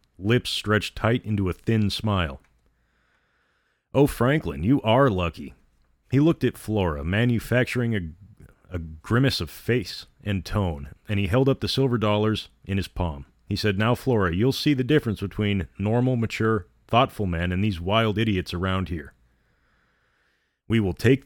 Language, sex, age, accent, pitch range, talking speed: English, male, 30-49, American, 90-120 Hz, 160 wpm